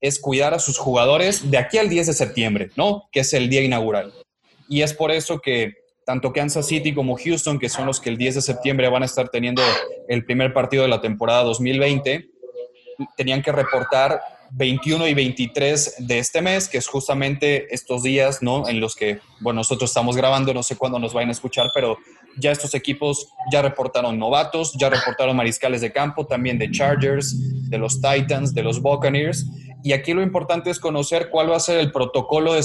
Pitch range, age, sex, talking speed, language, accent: 130-155 Hz, 20-39, male, 200 wpm, Spanish, Mexican